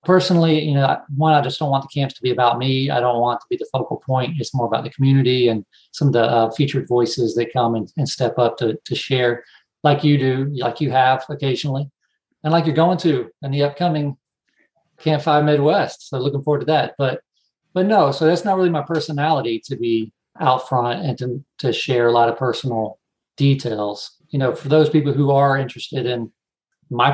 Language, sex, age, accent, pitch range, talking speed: English, male, 40-59, American, 120-150 Hz, 215 wpm